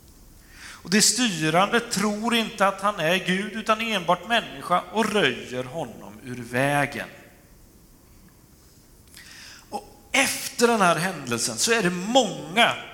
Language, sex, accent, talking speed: Swedish, male, native, 120 wpm